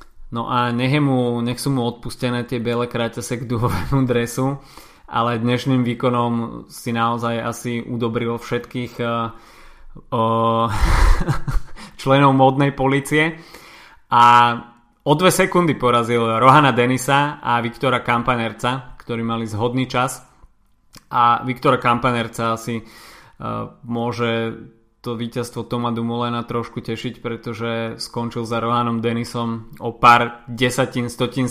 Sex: male